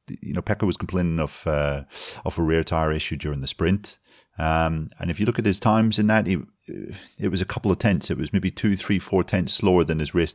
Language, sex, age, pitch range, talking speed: English, male, 30-49, 75-90 Hz, 250 wpm